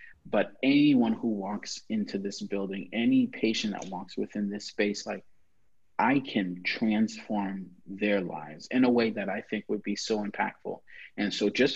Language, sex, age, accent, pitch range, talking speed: English, male, 30-49, American, 95-120 Hz, 170 wpm